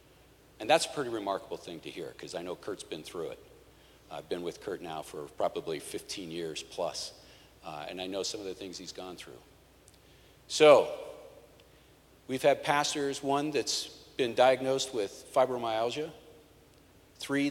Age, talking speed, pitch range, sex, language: 50-69, 160 wpm, 130-185 Hz, male, English